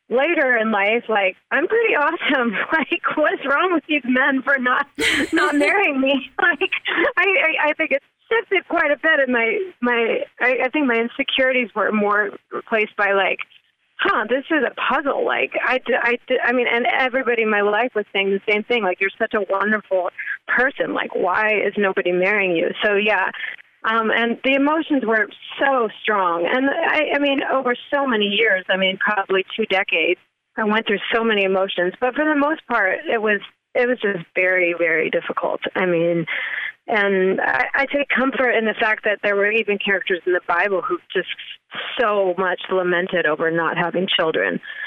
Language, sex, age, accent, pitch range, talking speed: English, female, 30-49, American, 195-275 Hz, 185 wpm